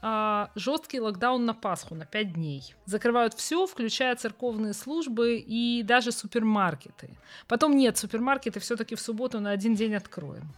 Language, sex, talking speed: Ukrainian, female, 140 wpm